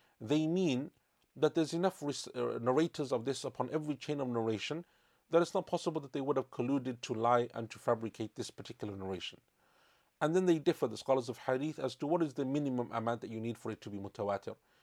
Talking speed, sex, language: 225 wpm, male, English